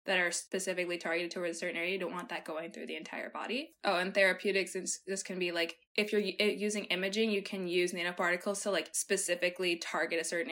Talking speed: 215 wpm